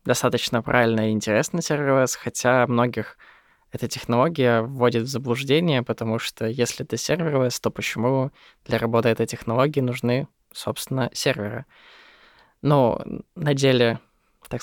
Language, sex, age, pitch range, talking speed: Russian, male, 20-39, 115-135 Hz, 125 wpm